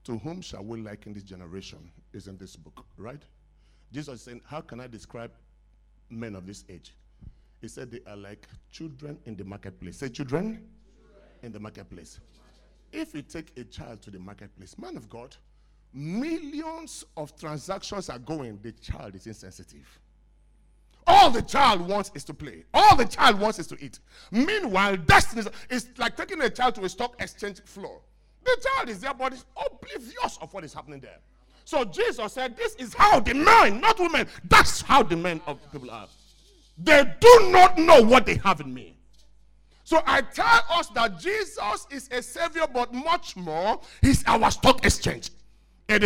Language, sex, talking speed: English, male, 180 wpm